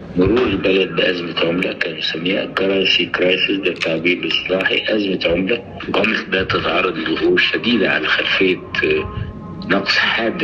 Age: 60-79